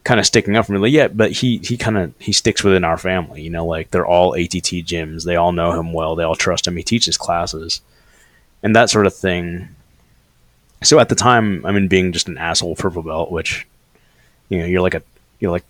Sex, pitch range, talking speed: male, 80-100 Hz, 235 wpm